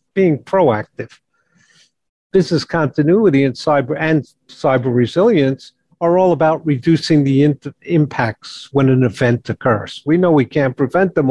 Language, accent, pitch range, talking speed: English, American, 125-160 Hz, 125 wpm